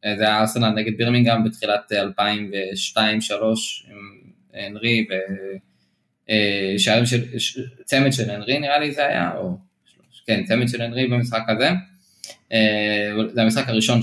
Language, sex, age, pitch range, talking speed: Hebrew, male, 20-39, 100-115 Hz, 115 wpm